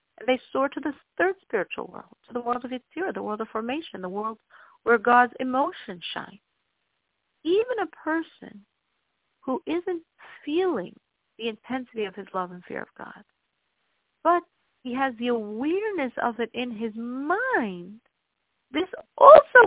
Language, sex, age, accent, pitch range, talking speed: English, female, 50-69, American, 215-290 Hz, 155 wpm